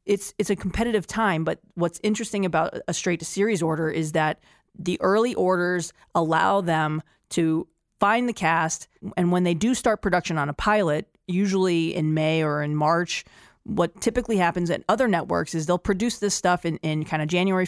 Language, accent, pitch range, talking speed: English, American, 165-205 Hz, 185 wpm